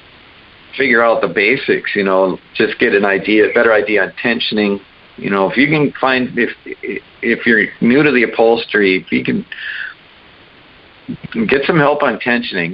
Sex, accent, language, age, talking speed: male, American, English, 50-69, 170 wpm